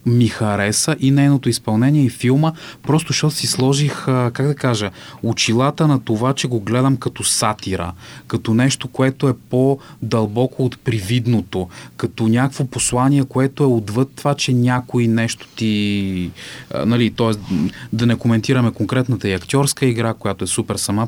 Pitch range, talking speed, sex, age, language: 105-130 Hz, 150 wpm, male, 30-49, Bulgarian